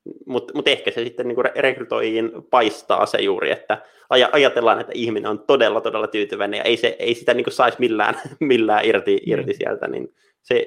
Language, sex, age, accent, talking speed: Finnish, male, 30-49, native, 155 wpm